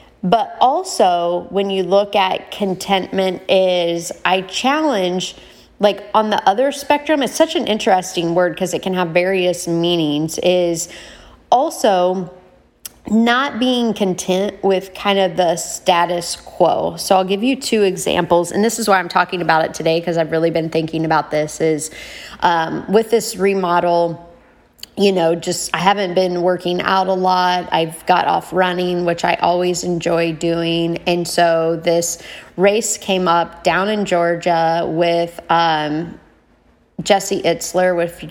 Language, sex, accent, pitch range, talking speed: English, female, American, 165-190 Hz, 155 wpm